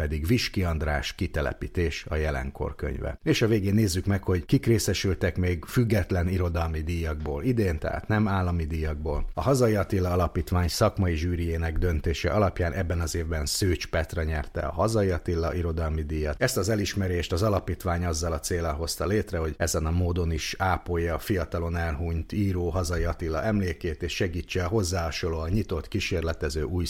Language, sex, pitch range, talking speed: Hungarian, male, 80-95 Hz, 155 wpm